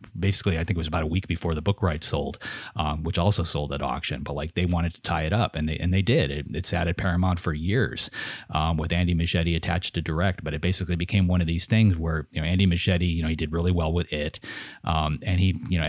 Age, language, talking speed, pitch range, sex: 30-49, English, 270 wpm, 80-95 Hz, male